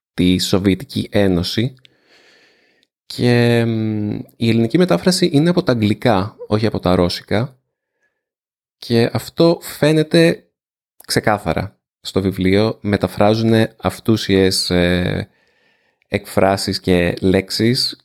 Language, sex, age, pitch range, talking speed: Greek, male, 20-39, 95-140 Hz, 95 wpm